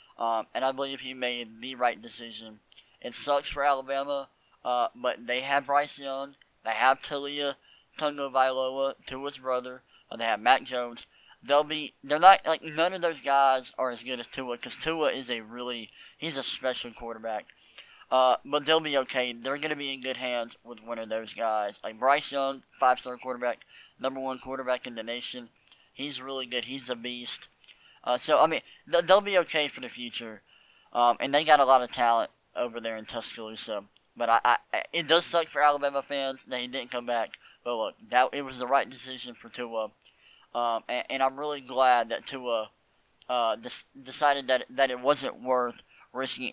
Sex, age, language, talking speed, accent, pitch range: male, 20-39, English, 195 wpm, American, 120-140 Hz